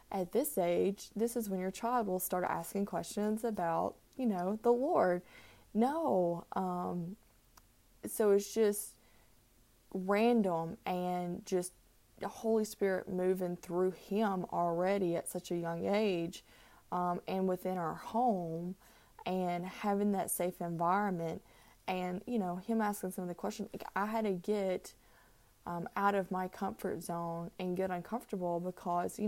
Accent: American